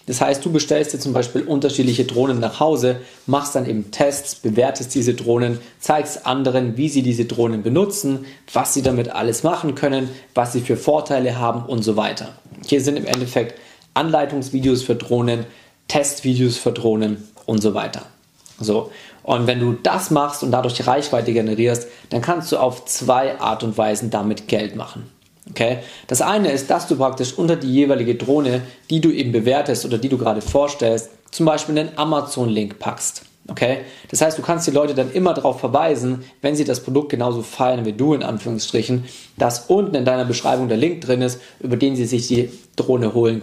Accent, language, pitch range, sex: German, German, 120-145 Hz, male